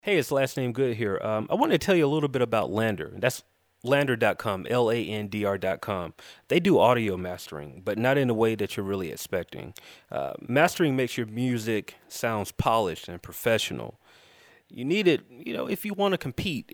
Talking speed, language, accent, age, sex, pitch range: 200 wpm, English, American, 30-49, male, 100-130 Hz